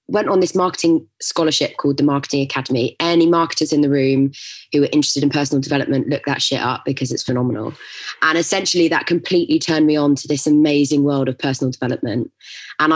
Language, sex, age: English, female, 20-39